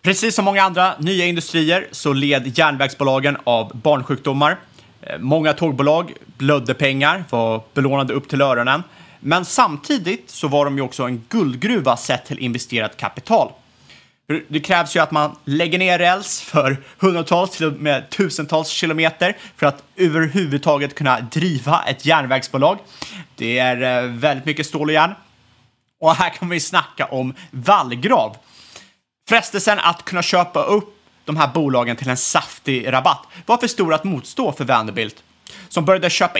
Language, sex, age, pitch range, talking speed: Swedish, male, 30-49, 135-180 Hz, 150 wpm